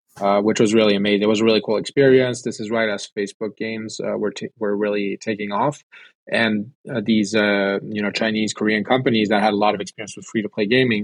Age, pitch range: 20-39, 100-115 Hz